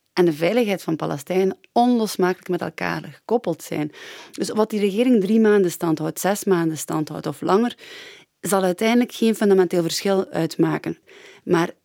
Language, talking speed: Dutch, 155 wpm